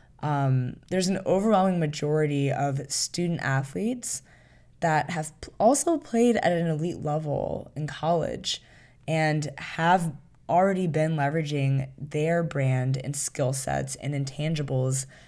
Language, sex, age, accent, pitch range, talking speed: English, female, 20-39, American, 135-170 Hz, 120 wpm